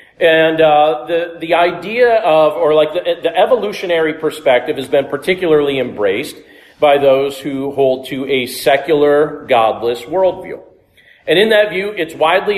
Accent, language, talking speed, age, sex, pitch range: American, English, 150 wpm, 40-59, male, 140-185 Hz